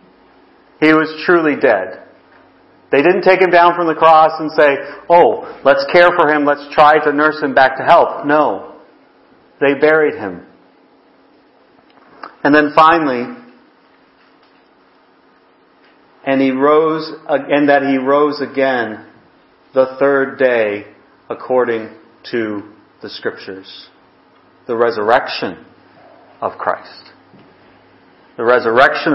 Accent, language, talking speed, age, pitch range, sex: American, English, 115 wpm, 40-59, 140-180 Hz, male